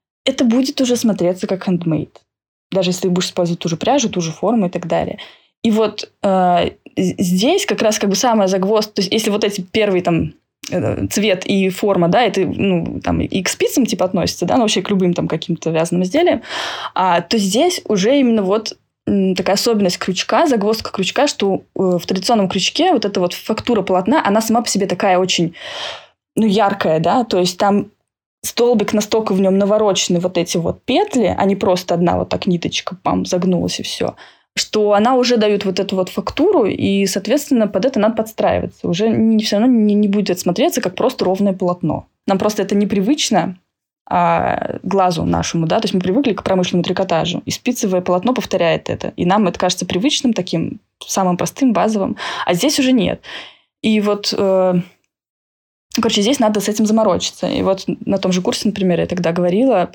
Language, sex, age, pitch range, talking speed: Russian, female, 20-39, 180-225 Hz, 185 wpm